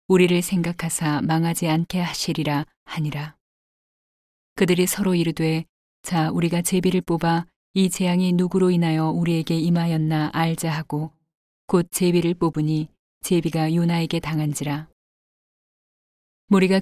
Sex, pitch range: female, 160-180 Hz